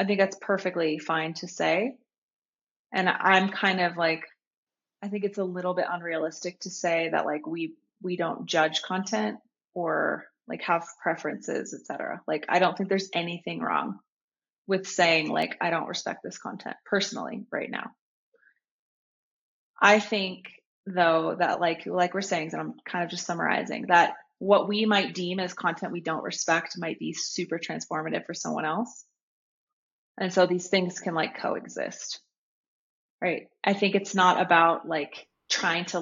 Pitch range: 170-200 Hz